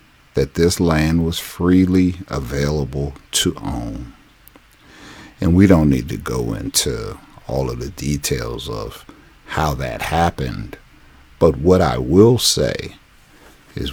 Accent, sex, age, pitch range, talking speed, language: American, male, 60-79, 70-90 Hz, 125 wpm, English